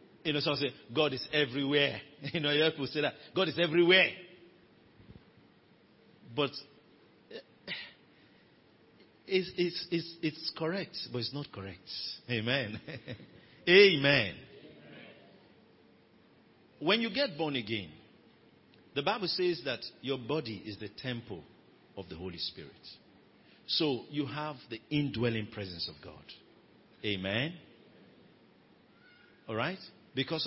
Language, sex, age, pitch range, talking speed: English, male, 50-69, 125-195 Hz, 110 wpm